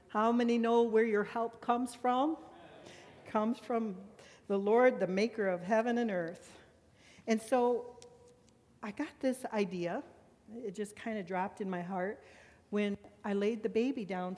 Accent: American